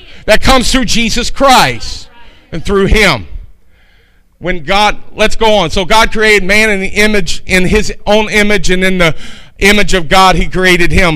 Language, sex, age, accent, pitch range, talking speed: English, male, 50-69, American, 185-245 Hz, 175 wpm